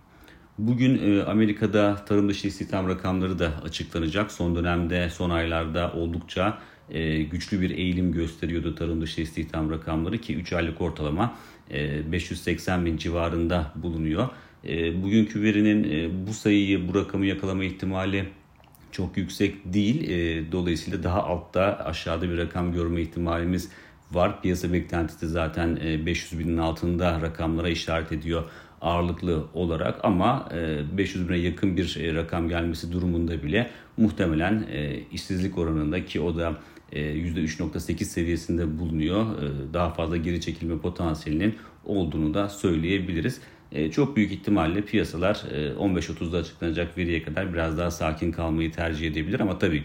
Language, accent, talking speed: Turkish, native, 125 wpm